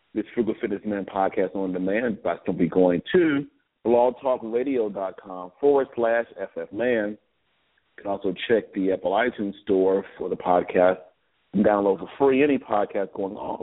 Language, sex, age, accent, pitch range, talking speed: English, male, 40-59, American, 95-130 Hz, 165 wpm